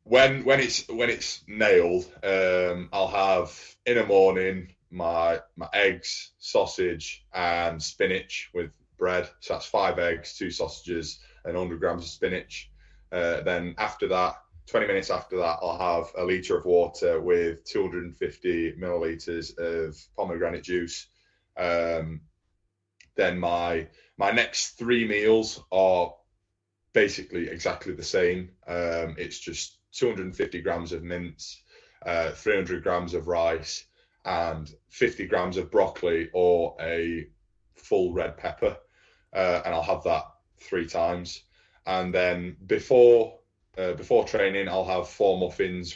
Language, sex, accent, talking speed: English, male, British, 135 wpm